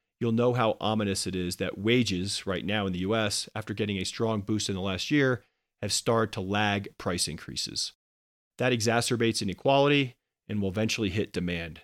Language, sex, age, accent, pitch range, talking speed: English, male, 40-59, American, 95-115 Hz, 180 wpm